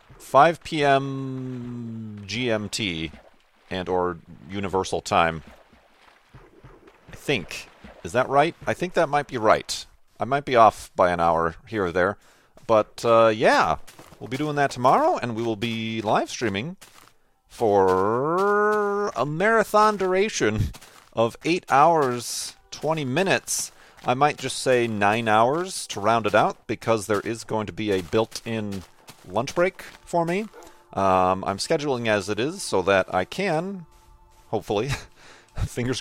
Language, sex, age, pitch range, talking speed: English, male, 40-59, 95-145 Hz, 140 wpm